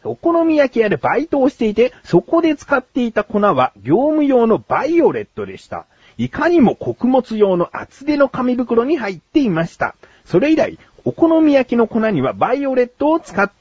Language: Japanese